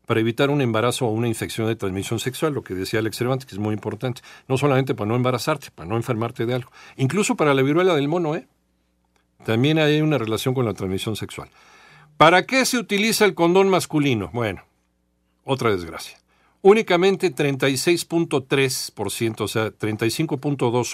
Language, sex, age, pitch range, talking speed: Spanish, male, 50-69, 110-145 Hz, 165 wpm